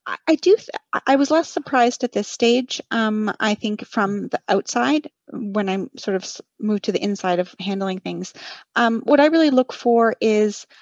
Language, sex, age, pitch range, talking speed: English, female, 30-49, 195-240 Hz, 190 wpm